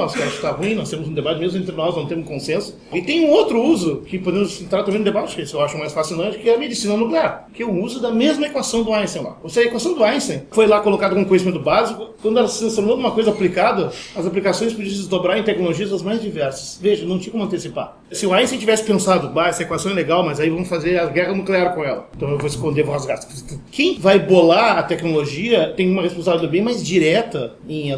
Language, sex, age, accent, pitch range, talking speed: Portuguese, male, 40-59, Brazilian, 165-220 Hz, 255 wpm